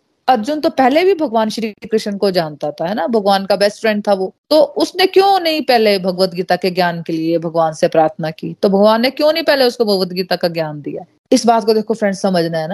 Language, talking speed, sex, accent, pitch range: Hindi, 125 wpm, female, native, 185-240 Hz